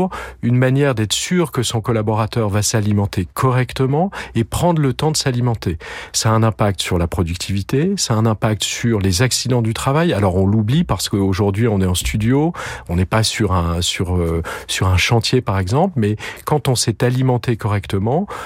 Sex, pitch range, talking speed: male, 105-140 Hz, 190 wpm